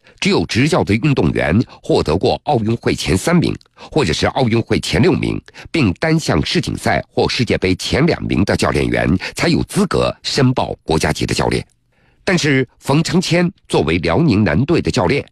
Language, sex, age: Chinese, male, 50-69